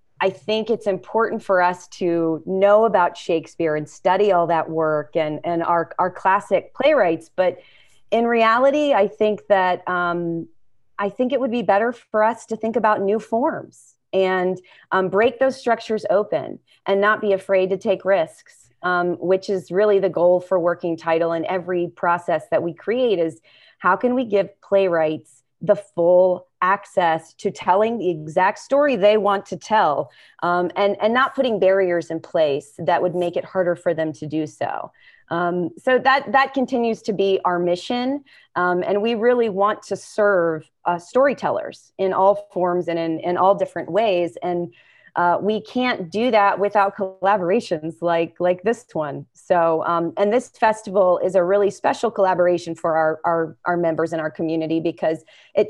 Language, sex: English, female